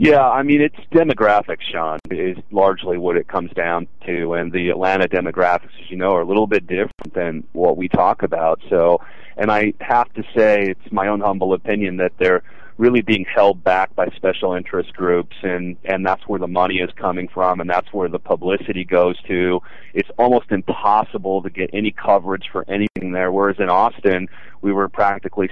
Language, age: English, 30-49